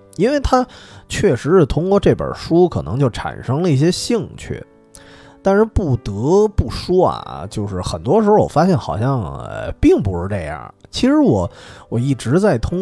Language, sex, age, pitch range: Chinese, male, 20-39, 100-150 Hz